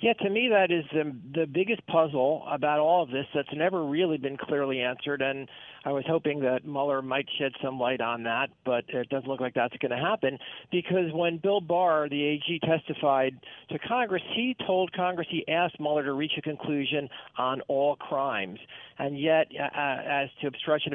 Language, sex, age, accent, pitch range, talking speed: English, male, 50-69, American, 130-160 Hz, 195 wpm